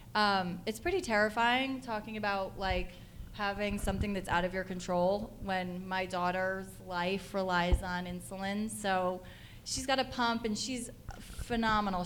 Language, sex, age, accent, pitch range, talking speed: English, female, 20-39, American, 185-225 Hz, 145 wpm